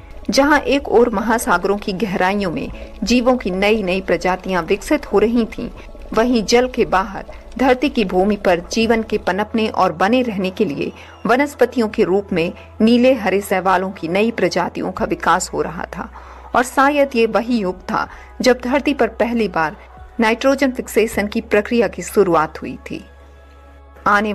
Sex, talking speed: female, 165 wpm